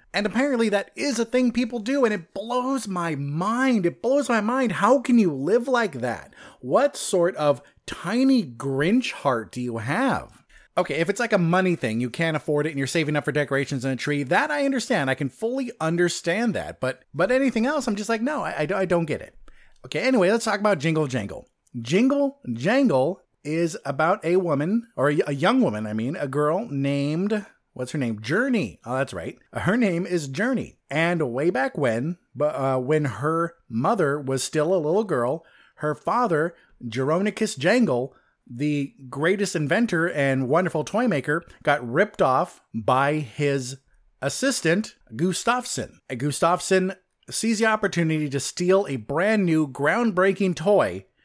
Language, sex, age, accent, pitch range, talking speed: English, male, 30-49, American, 145-220 Hz, 175 wpm